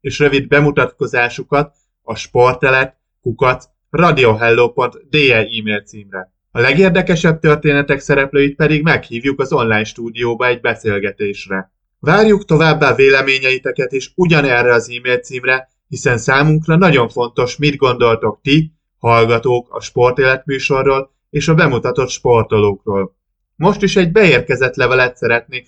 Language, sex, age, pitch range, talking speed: Hungarian, male, 20-39, 115-145 Hz, 105 wpm